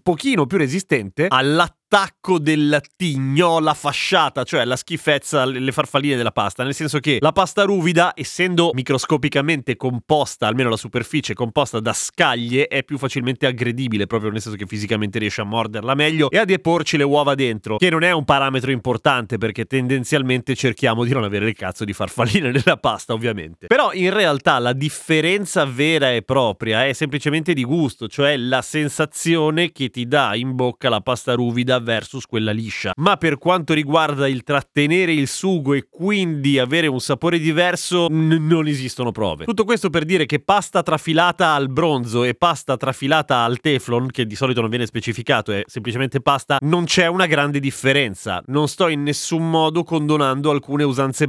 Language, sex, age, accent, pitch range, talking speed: Italian, male, 30-49, native, 125-160 Hz, 175 wpm